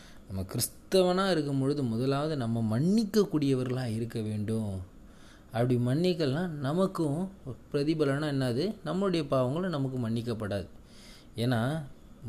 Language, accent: Tamil, native